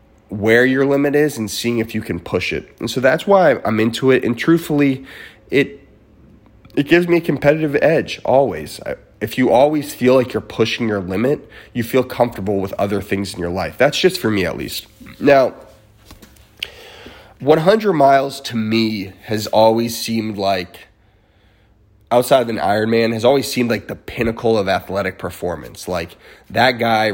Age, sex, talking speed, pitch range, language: 30-49, male, 170 wpm, 100-125 Hz, English